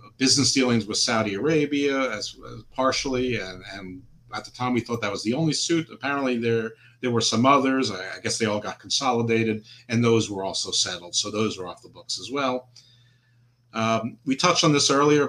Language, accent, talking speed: English, American, 205 wpm